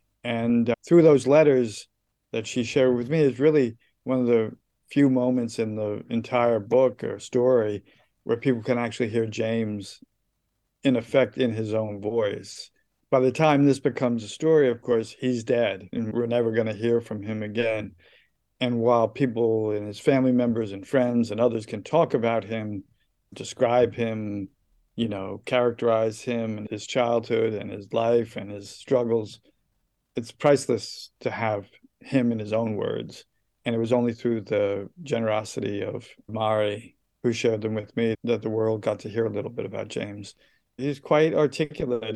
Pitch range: 110-125 Hz